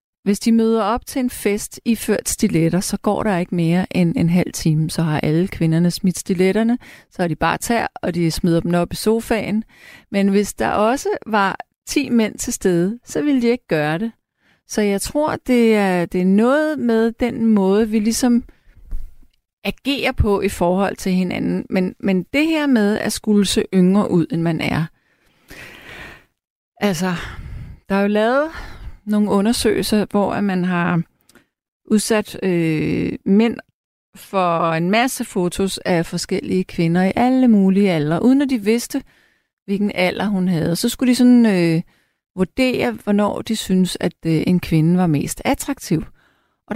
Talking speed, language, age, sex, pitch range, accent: 170 wpm, Danish, 30-49, female, 180-230 Hz, native